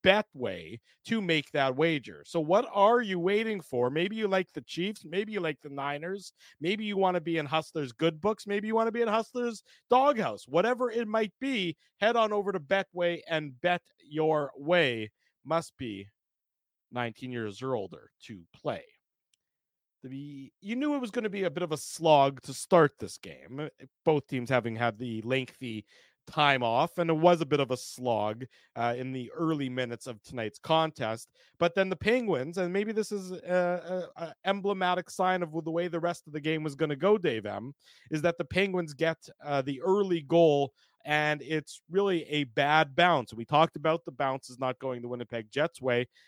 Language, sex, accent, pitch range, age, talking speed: English, male, American, 135-185 Hz, 40-59, 200 wpm